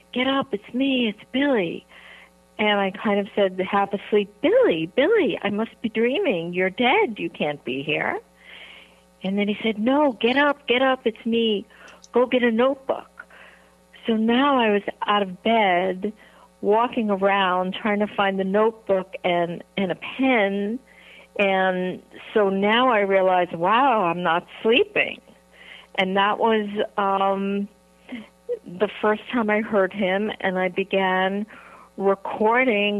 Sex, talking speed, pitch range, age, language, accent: female, 145 wpm, 185-225 Hz, 60-79, English, American